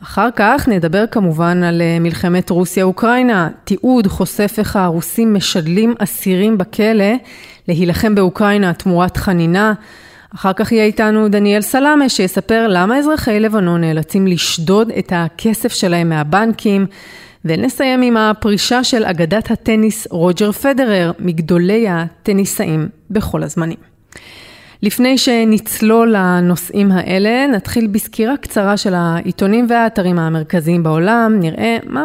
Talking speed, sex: 110 wpm, female